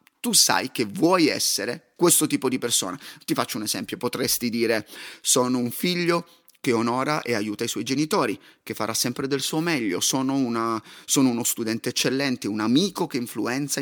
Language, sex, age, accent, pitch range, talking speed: Italian, male, 30-49, native, 120-155 Hz, 175 wpm